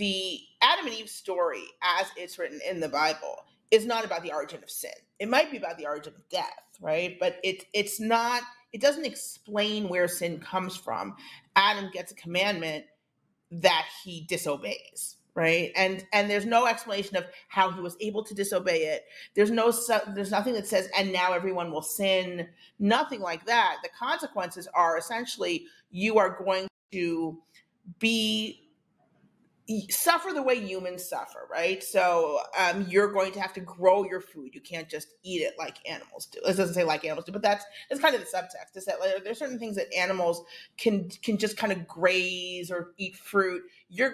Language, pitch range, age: English, 175-220 Hz, 40-59